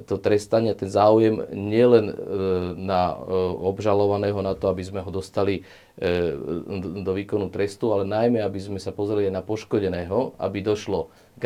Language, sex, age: Slovak, male, 30-49